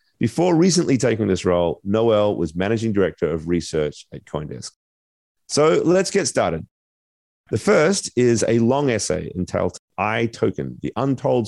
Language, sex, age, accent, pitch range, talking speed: English, male, 30-49, Australian, 95-125 Hz, 145 wpm